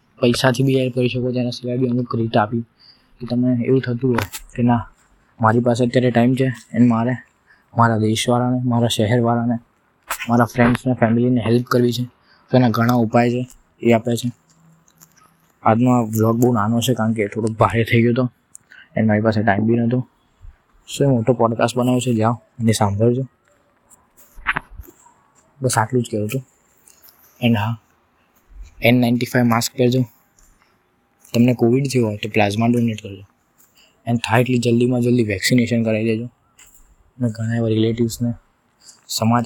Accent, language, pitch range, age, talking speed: native, Gujarati, 115-125 Hz, 20-39, 120 wpm